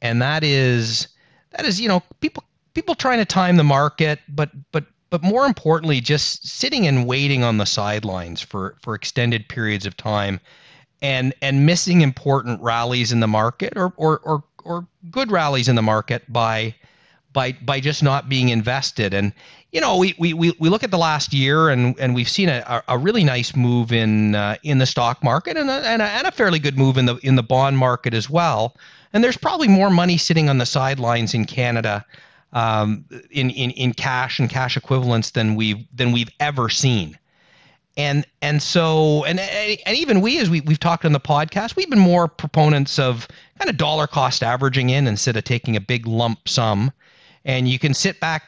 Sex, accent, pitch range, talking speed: male, American, 120-160 Hz, 200 wpm